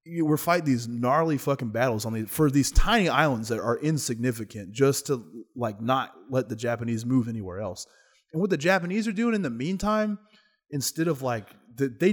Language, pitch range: English, 115-170 Hz